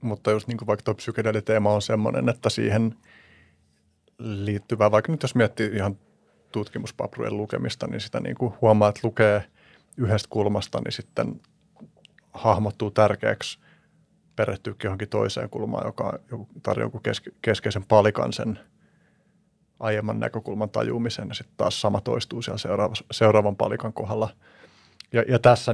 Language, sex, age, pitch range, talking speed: Finnish, male, 30-49, 105-115 Hz, 120 wpm